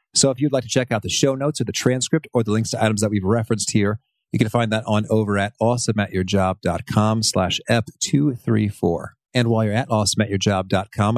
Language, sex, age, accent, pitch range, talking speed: English, male, 40-59, American, 105-130 Hz, 200 wpm